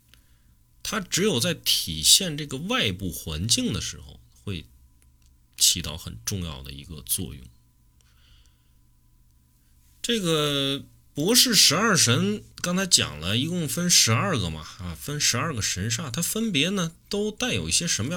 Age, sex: 30-49, male